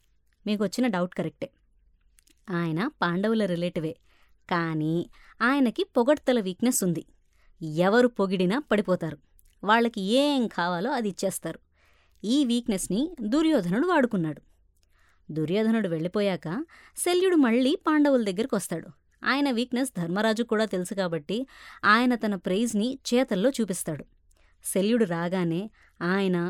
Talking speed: 100 wpm